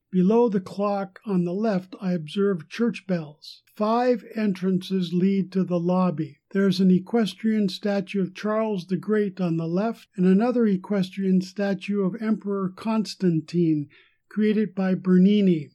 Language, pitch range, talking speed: English, 180-215 Hz, 145 wpm